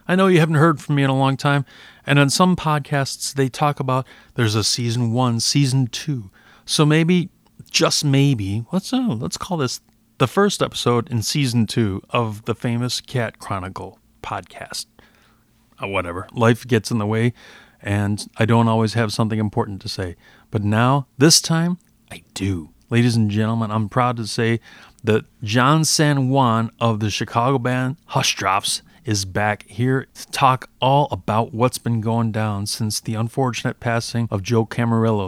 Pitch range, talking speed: 110-135 Hz, 170 wpm